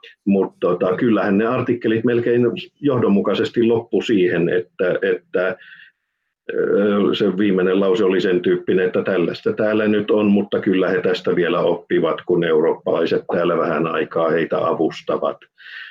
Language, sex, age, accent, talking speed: Finnish, male, 50-69, native, 130 wpm